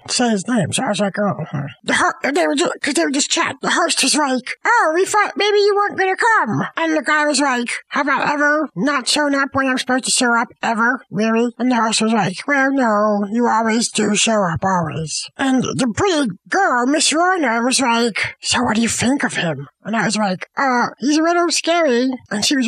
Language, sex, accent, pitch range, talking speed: English, male, American, 215-310 Hz, 235 wpm